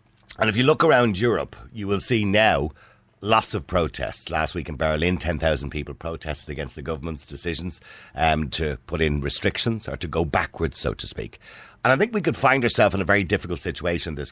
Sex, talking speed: male, 210 wpm